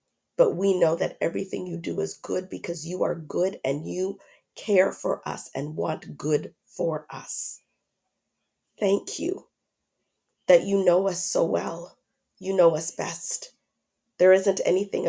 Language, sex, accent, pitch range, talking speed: English, female, American, 165-200 Hz, 150 wpm